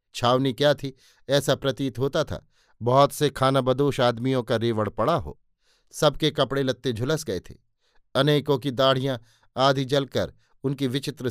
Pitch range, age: 125-145 Hz, 50-69